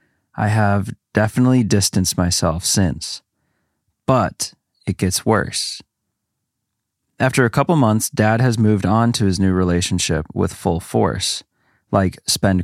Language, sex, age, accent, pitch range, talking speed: English, male, 30-49, American, 95-110 Hz, 130 wpm